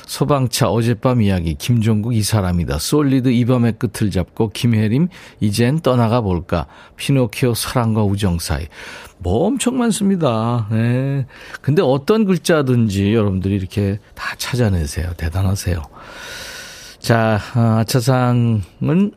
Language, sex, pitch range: Korean, male, 100-145 Hz